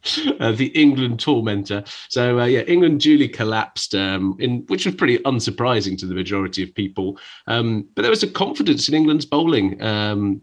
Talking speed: 175 wpm